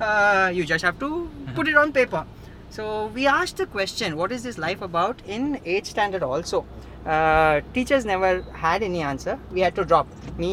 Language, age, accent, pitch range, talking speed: English, 20-39, Indian, 180-235 Hz, 195 wpm